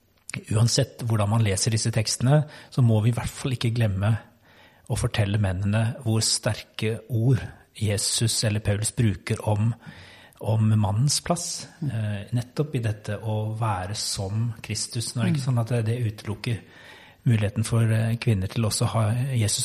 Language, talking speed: English, 135 wpm